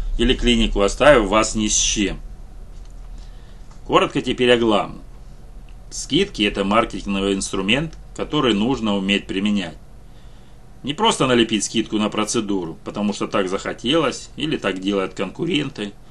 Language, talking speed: Russian, 125 wpm